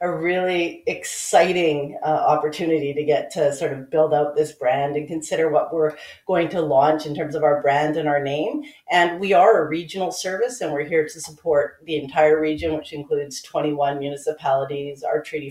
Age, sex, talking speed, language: 40-59, female, 190 wpm, English